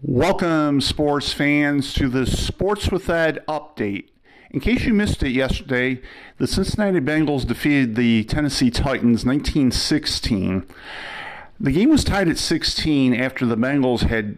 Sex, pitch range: male, 110-135 Hz